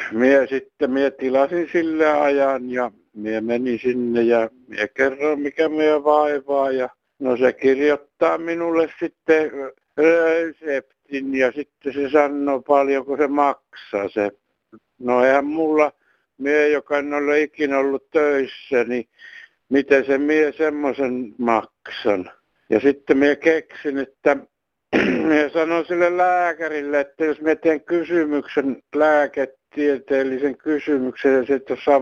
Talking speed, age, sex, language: 125 wpm, 60-79, male, Finnish